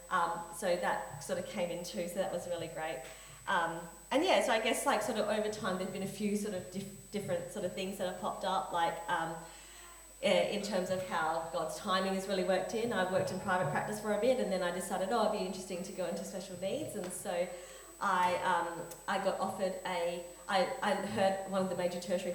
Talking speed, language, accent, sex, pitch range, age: 240 wpm, English, Australian, female, 180-205 Hz, 30-49